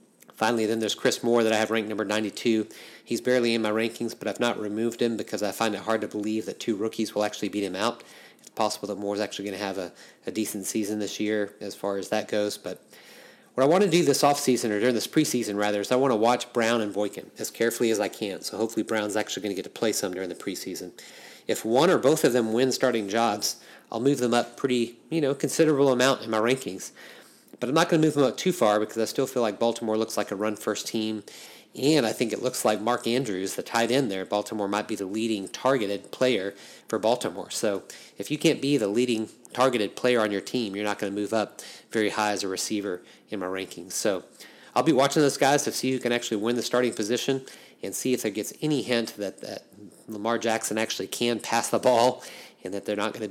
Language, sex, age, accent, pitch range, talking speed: English, male, 30-49, American, 105-120 Hz, 250 wpm